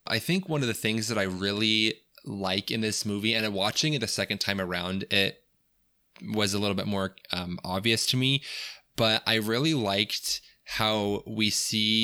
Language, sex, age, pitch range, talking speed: English, male, 20-39, 100-115 Hz, 185 wpm